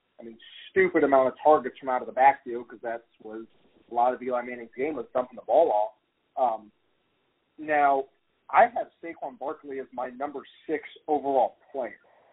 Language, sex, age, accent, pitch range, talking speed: English, male, 30-49, American, 125-150 Hz, 180 wpm